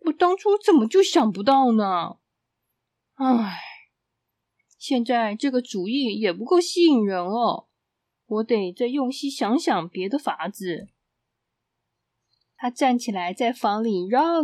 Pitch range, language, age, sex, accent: 200-285 Hz, Chinese, 20-39, female, native